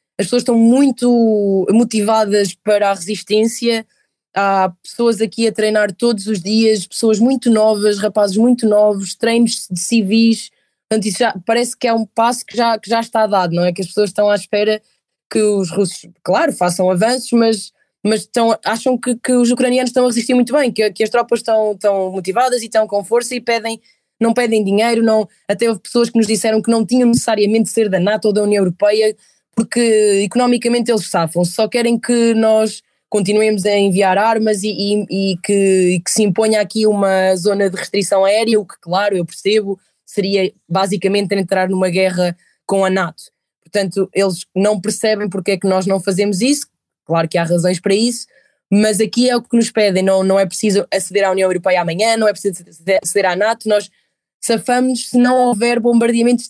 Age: 20-39